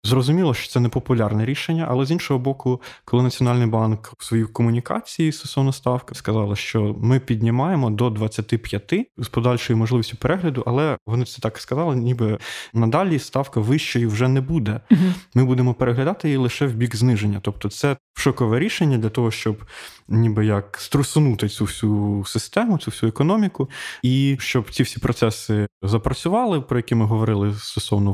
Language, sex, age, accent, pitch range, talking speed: Ukrainian, male, 20-39, native, 110-135 Hz, 160 wpm